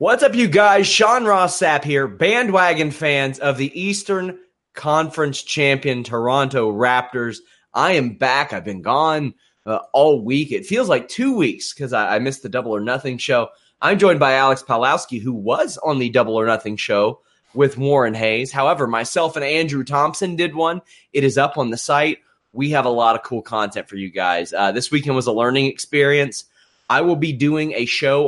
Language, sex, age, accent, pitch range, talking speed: English, male, 30-49, American, 115-140 Hz, 195 wpm